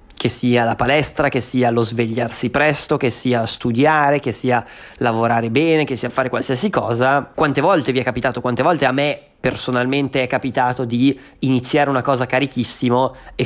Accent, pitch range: native, 125-150 Hz